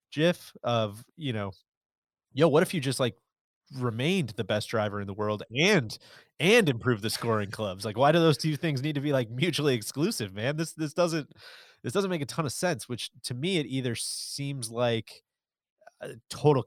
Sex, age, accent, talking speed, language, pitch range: male, 30-49, American, 200 wpm, English, 110-135 Hz